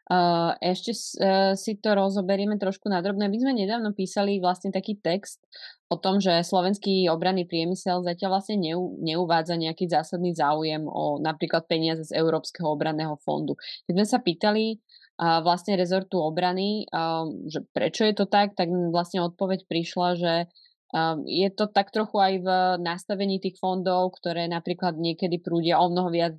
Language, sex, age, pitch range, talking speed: Slovak, female, 20-39, 165-190 Hz, 155 wpm